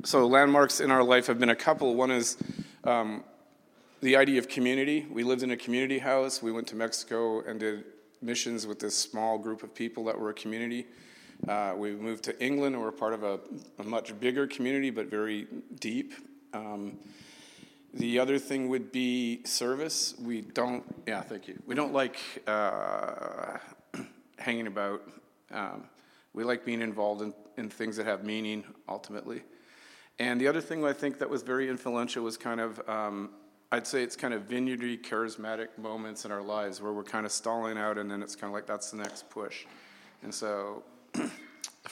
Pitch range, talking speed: 105-125 Hz, 185 wpm